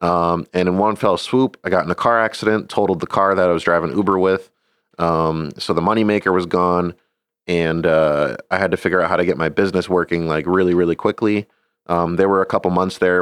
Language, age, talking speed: English, 30-49, 230 wpm